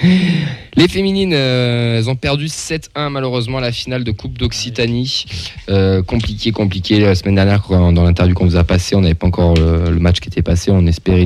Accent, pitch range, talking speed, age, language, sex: French, 90-115 Hz, 215 wpm, 20-39, French, male